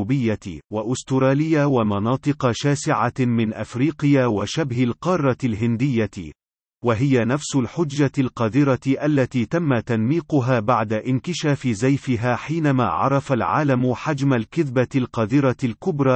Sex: male